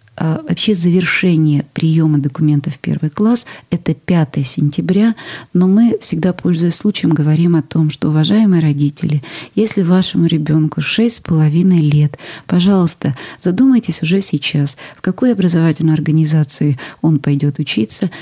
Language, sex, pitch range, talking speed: Russian, female, 155-190 Hz, 120 wpm